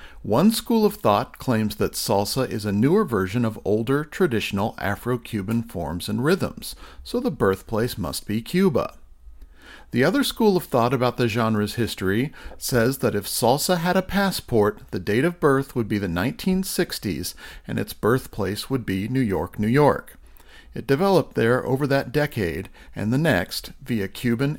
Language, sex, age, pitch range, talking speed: English, male, 50-69, 105-155 Hz, 165 wpm